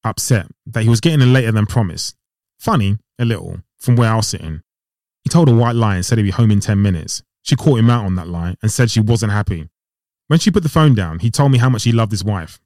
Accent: British